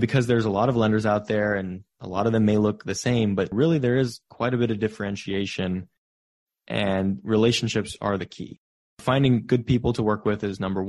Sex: male